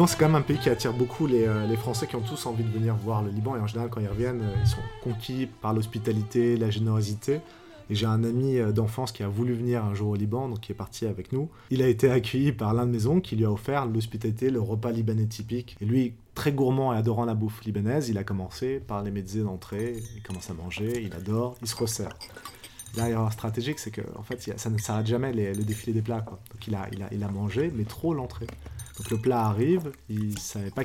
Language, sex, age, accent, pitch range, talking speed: French, male, 30-49, French, 110-130 Hz, 255 wpm